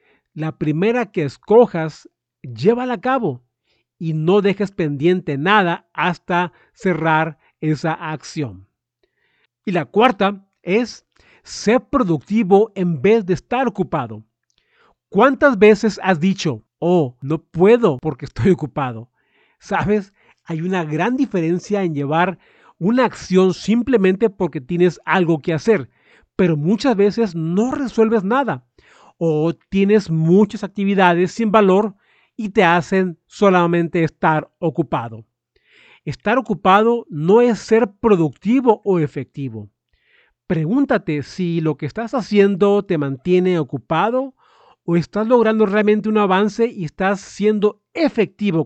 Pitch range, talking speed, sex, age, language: 155-215 Hz, 120 wpm, male, 50-69, Spanish